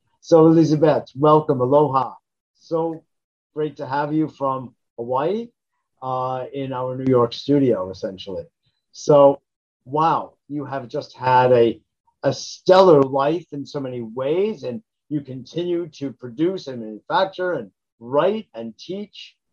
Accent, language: American, English